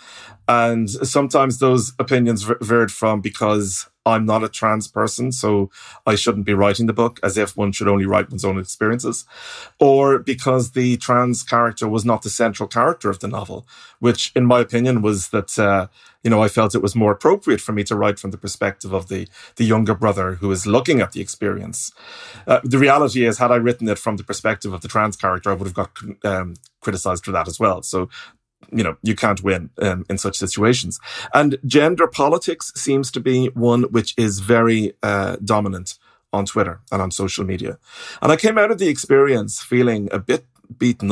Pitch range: 100-120 Hz